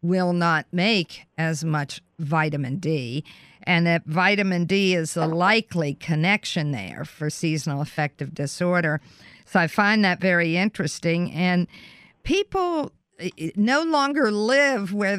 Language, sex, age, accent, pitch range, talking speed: English, female, 50-69, American, 165-210 Hz, 125 wpm